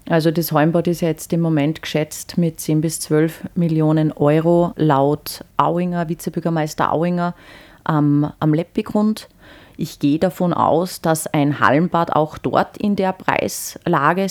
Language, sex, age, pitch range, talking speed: German, female, 30-49, 155-180 Hz, 145 wpm